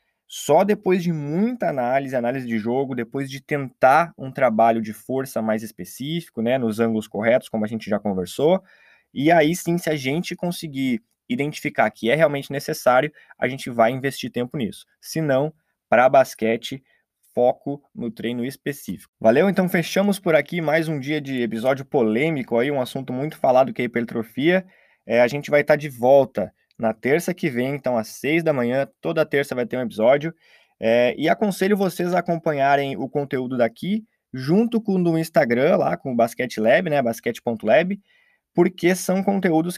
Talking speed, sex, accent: 175 wpm, male, Brazilian